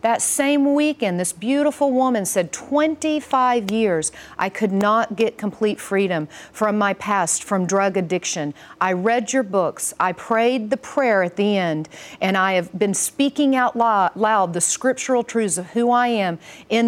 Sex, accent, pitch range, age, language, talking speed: female, American, 190-250 Hz, 40-59, English, 165 wpm